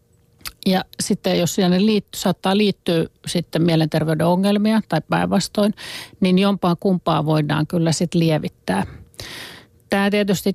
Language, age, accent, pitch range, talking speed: Finnish, 50-69, native, 165-190 Hz, 120 wpm